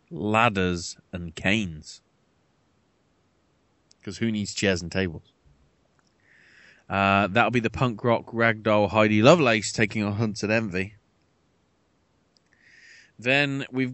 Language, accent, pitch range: English, British, 105-125 Hz